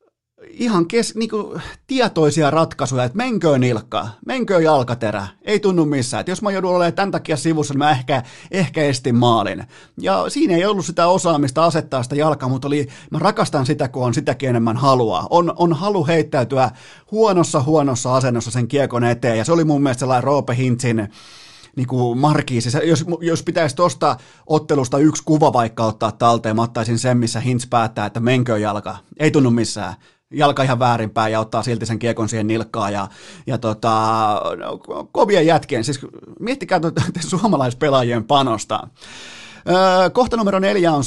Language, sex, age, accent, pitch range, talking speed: Finnish, male, 30-49, native, 120-165 Hz, 160 wpm